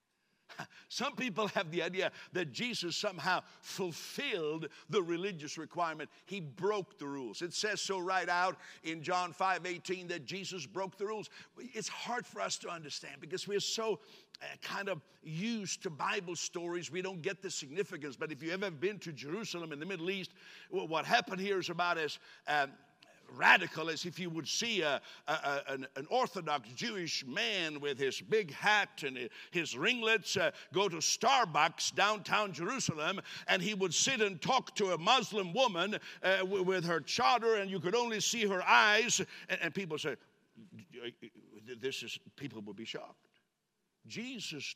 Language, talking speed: English, 165 wpm